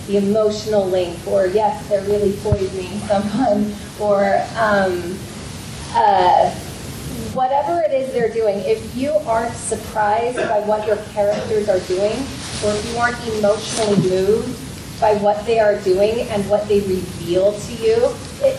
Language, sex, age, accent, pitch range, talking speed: English, female, 30-49, American, 190-230 Hz, 145 wpm